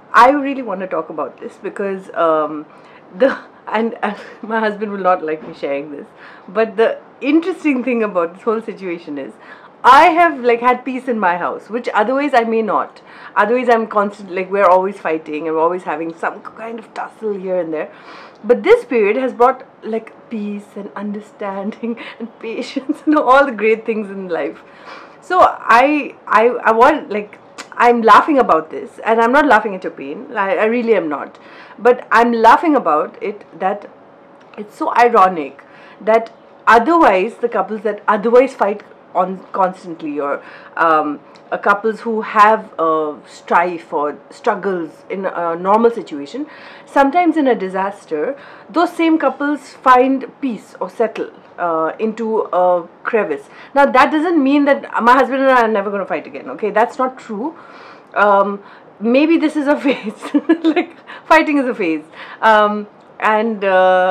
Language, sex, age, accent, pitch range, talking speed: English, female, 30-49, Indian, 190-265 Hz, 170 wpm